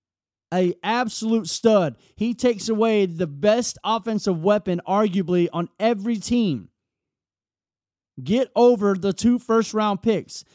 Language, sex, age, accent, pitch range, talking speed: English, male, 30-49, American, 170-230 Hz, 120 wpm